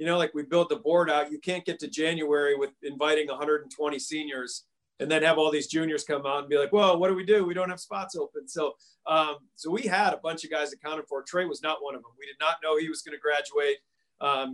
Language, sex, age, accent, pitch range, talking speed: English, male, 40-59, American, 145-180 Hz, 270 wpm